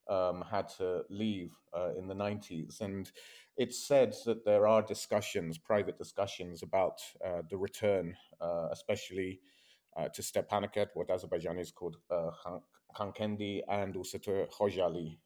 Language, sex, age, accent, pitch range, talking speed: English, male, 30-49, British, 95-110 Hz, 140 wpm